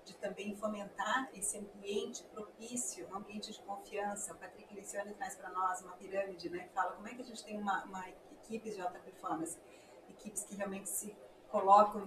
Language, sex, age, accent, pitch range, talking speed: Portuguese, female, 40-59, Brazilian, 190-230 Hz, 185 wpm